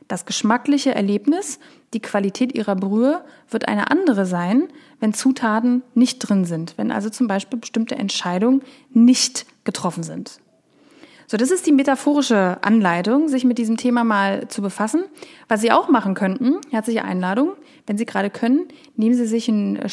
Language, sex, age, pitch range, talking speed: German, female, 30-49, 220-285 Hz, 160 wpm